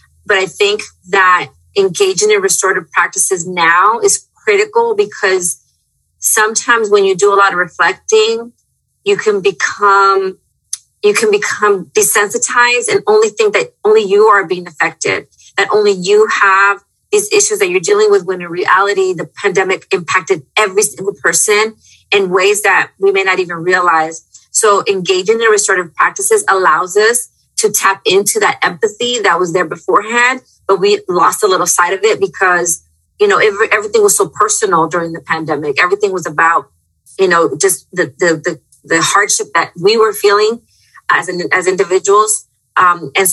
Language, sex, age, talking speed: English, female, 30-49, 165 wpm